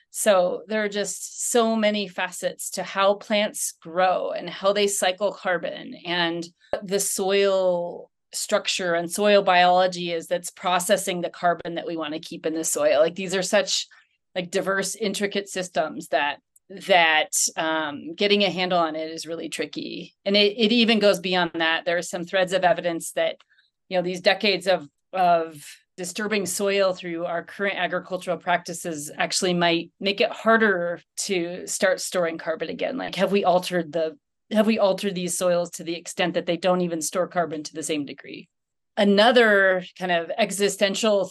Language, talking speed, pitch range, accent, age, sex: English, 175 wpm, 175-205 Hz, American, 30-49, female